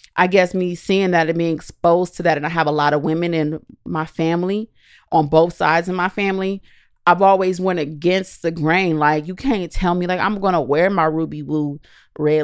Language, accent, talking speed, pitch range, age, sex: English, American, 215 wpm, 160-205 Hz, 30-49, female